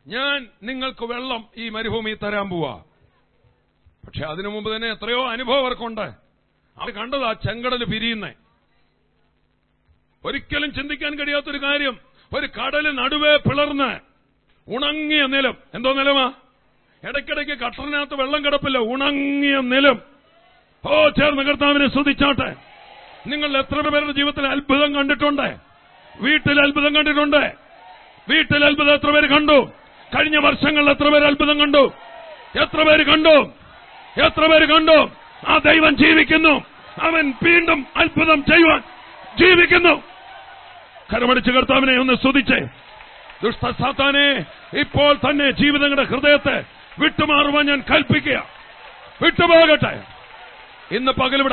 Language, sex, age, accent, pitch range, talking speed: English, male, 50-69, Indian, 260-300 Hz, 70 wpm